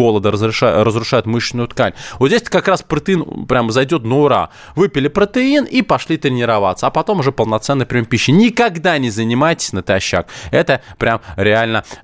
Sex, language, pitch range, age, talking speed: male, Russian, 110-160 Hz, 20-39, 165 wpm